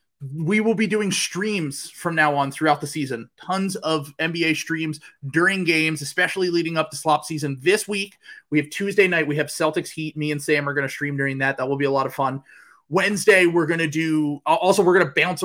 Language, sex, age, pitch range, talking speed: English, male, 30-49, 140-170 Hz, 230 wpm